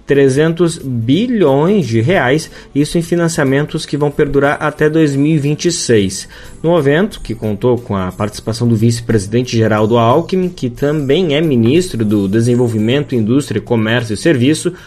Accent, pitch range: Brazilian, 125-165 Hz